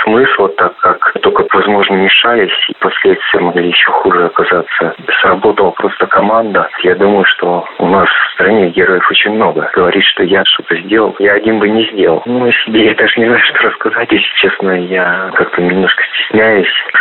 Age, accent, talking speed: 30-49, native, 175 wpm